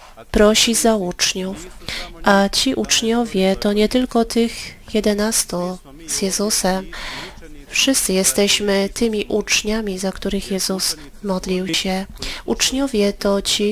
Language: Polish